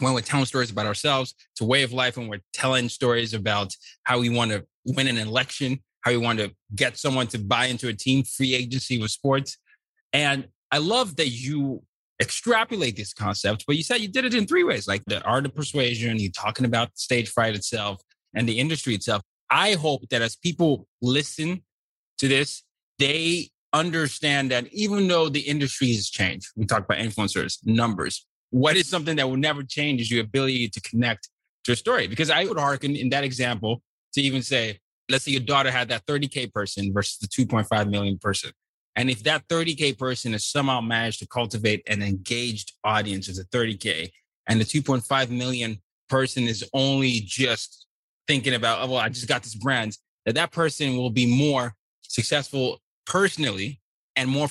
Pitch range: 110-140 Hz